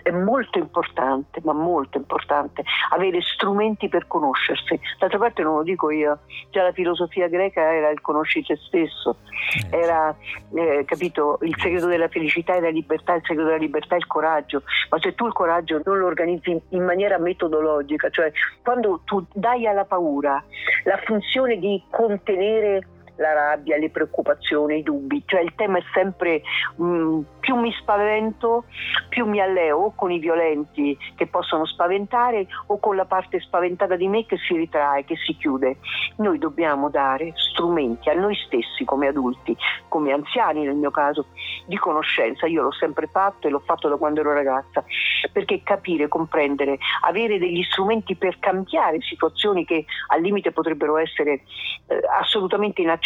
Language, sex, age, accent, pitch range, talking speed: Italian, female, 50-69, native, 155-200 Hz, 160 wpm